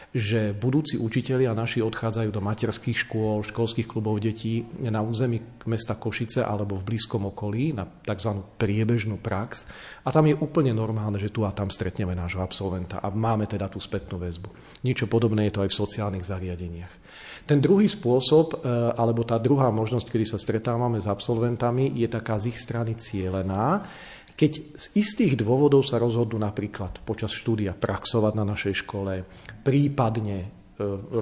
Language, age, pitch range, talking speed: Slovak, 40-59, 105-125 Hz, 160 wpm